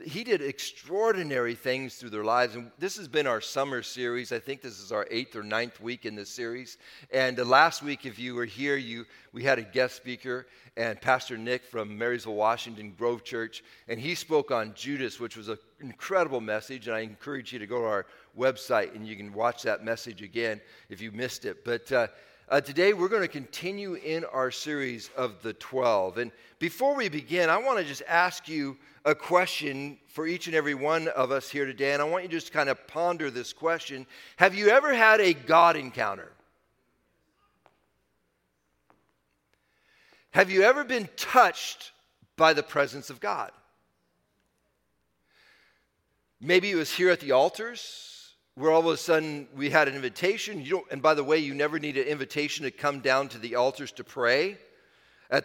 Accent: American